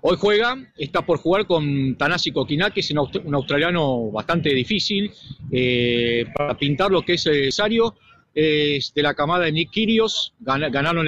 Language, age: English, 40-59